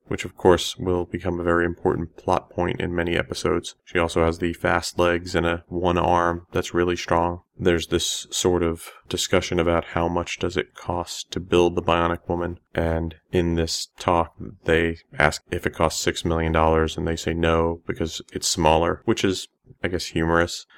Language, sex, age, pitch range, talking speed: English, male, 30-49, 80-90 Hz, 190 wpm